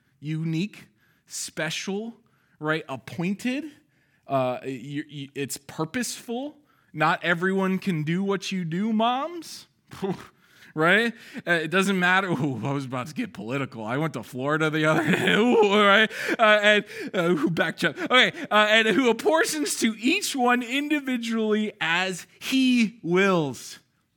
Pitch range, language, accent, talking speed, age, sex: 170-255 Hz, English, American, 135 wpm, 20-39, male